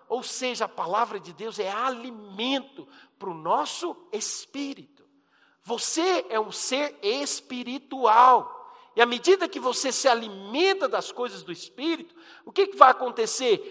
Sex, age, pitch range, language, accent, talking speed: male, 50-69, 205-300 Hz, Portuguese, Brazilian, 145 wpm